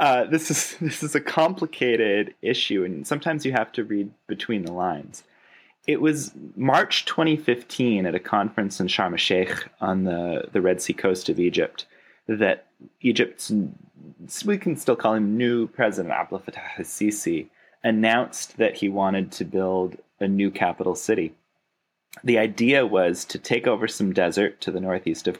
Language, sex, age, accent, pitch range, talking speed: English, male, 20-39, American, 100-125 Hz, 165 wpm